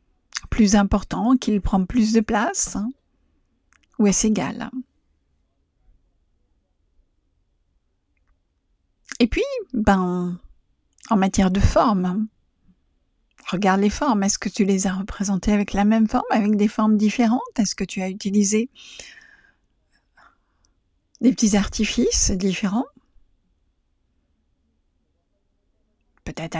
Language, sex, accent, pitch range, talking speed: French, female, French, 180-235 Hz, 100 wpm